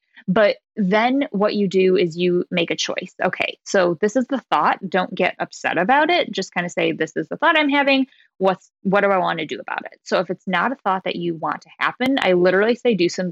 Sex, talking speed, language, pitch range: female, 250 wpm, English, 175-230 Hz